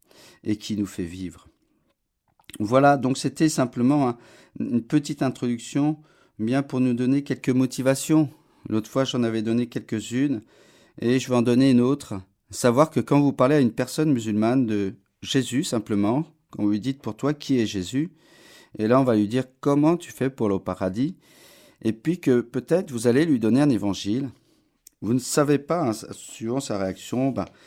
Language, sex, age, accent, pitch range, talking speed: French, male, 40-59, French, 105-135 Hz, 180 wpm